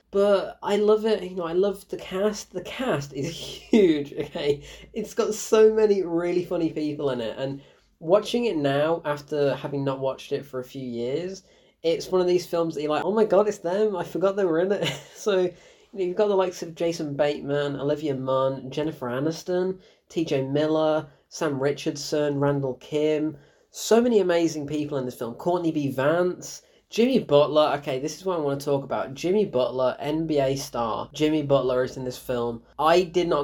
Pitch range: 140-180 Hz